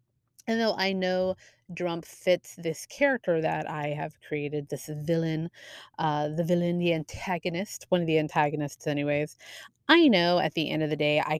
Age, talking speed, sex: 30-49, 175 wpm, female